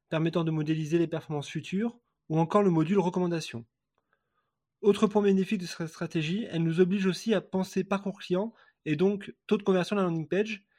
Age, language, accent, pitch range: 20-39, French, French, 155-195 Hz